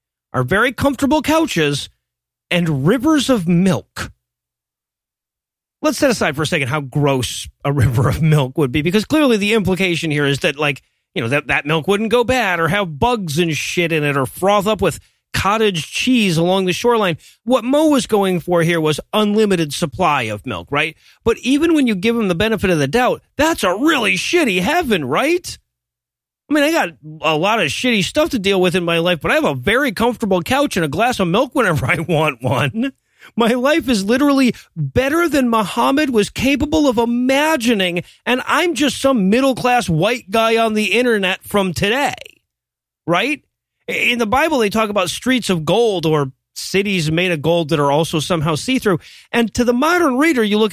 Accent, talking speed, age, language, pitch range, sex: American, 195 wpm, 30-49, English, 170-260 Hz, male